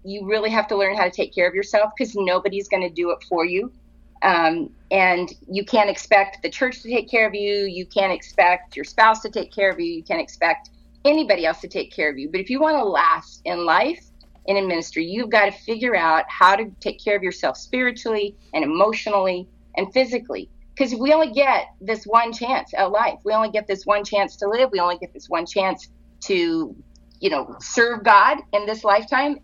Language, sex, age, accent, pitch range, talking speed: English, female, 30-49, American, 195-245 Hz, 220 wpm